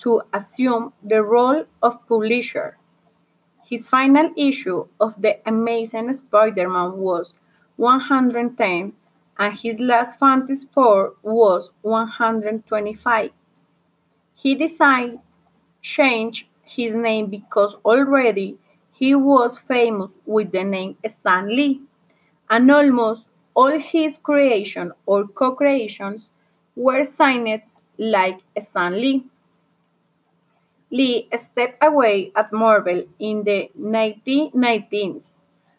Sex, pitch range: female, 210-265 Hz